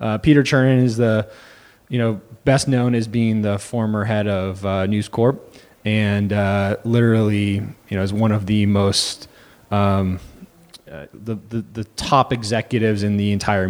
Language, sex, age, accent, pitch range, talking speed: English, male, 20-39, American, 105-135 Hz, 165 wpm